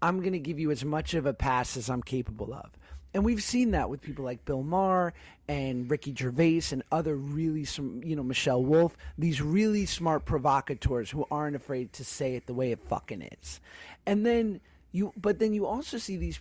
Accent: American